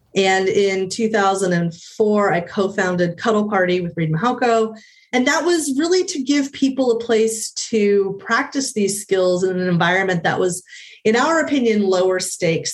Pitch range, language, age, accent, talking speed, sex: 180-235 Hz, English, 30-49, American, 155 wpm, female